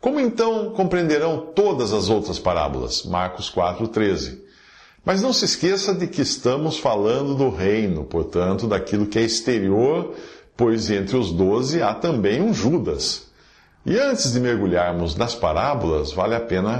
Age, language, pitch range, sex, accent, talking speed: 50-69, English, 95-160 Hz, male, Brazilian, 145 wpm